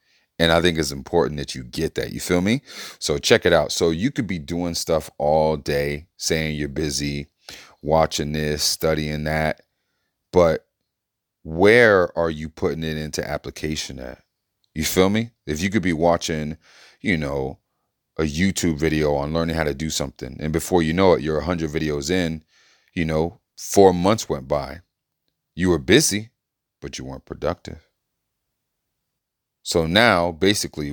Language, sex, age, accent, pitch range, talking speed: English, male, 30-49, American, 75-90 Hz, 165 wpm